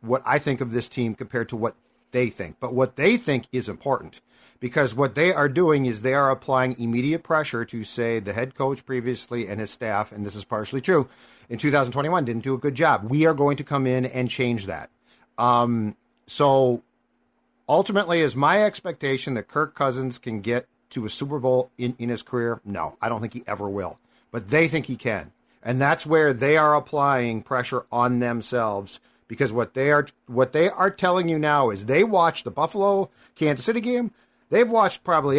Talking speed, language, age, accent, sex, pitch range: 200 wpm, English, 50-69, American, male, 120-155 Hz